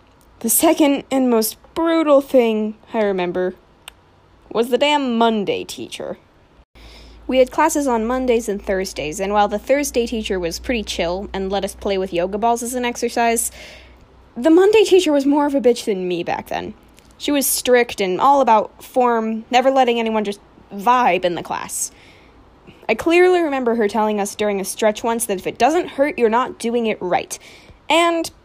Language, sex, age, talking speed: English, female, 10-29, 180 wpm